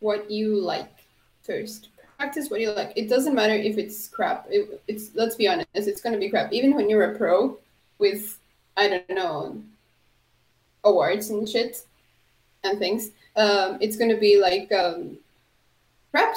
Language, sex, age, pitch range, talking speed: English, female, 20-39, 205-250 Hz, 160 wpm